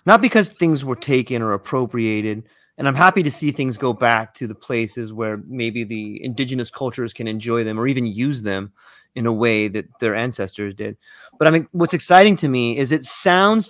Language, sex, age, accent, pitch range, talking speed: English, male, 30-49, American, 125-170 Hz, 205 wpm